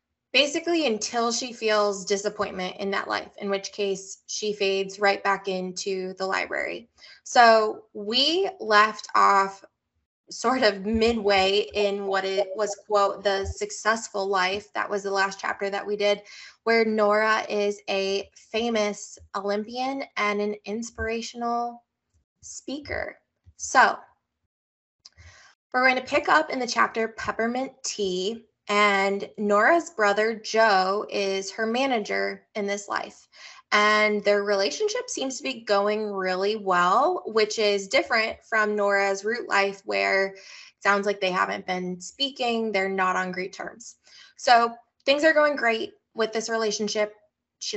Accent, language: American, English